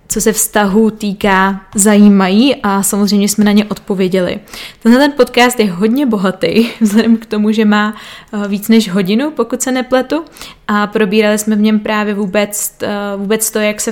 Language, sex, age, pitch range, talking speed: Czech, female, 20-39, 200-220 Hz, 170 wpm